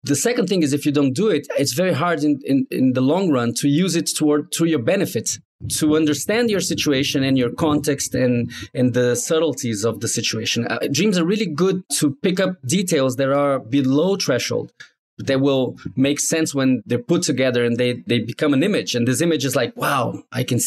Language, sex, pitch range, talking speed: English, male, 135-170 Hz, 215 wpm